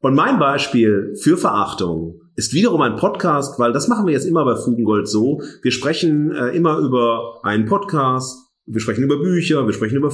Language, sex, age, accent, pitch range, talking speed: German, male, 40-59, German, 105-150 Hz, 190 wpm